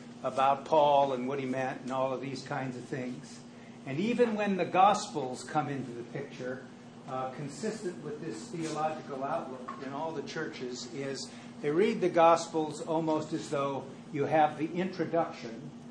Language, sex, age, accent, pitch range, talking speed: English, male, 60-79, American, 145-175 Hz, 165 wpm